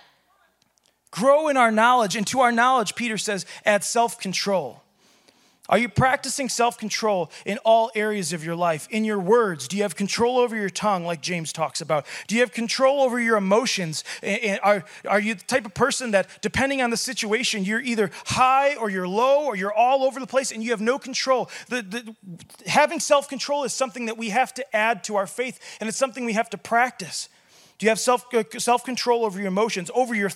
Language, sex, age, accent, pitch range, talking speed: English, male, 30-49, American, 185-245 Hz, 200 wpm